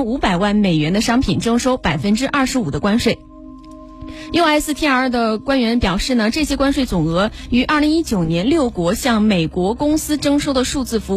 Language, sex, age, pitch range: Chinese, female, 20-39, 210-275 Hz